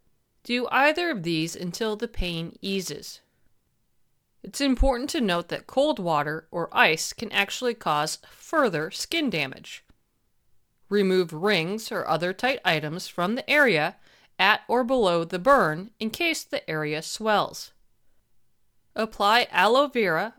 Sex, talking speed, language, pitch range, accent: female, 130 wpm, English, 165-250 Hz, American